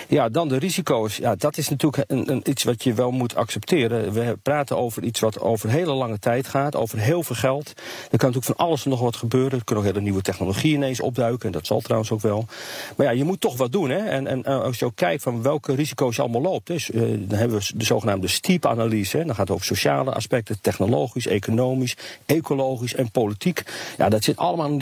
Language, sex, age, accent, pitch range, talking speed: Dutch, male, 40-59, Dutch, 115-145 Hz, 235 wpm